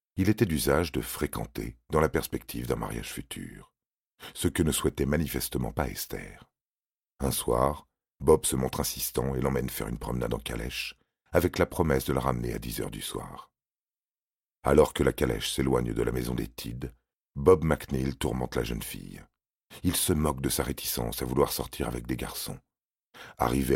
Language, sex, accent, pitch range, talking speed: French, male, French, 65-75 Hz, 180 wpm